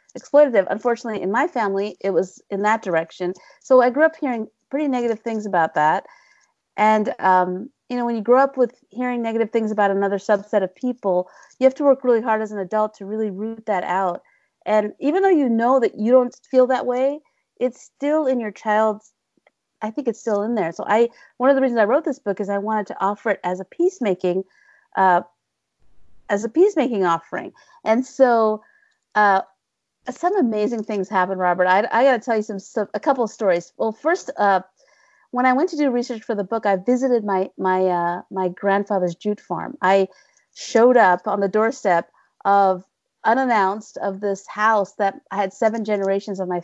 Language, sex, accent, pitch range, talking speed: English, female, American, 195-250 Hz, 200 wpm